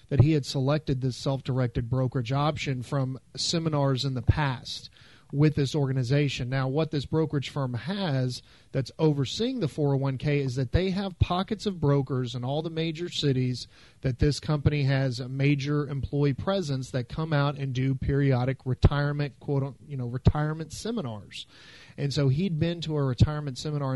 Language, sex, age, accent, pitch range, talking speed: English, male, 40-59, American, 130-150 Hz, 165 wpm